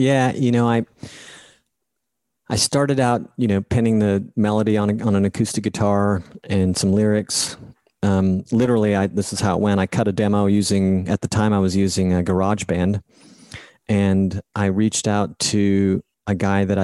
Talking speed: 180 wpm